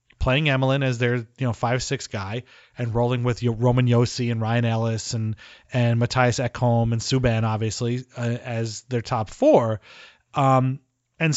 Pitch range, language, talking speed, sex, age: 120-145 Hz, English, 165 wpm, male, 30-49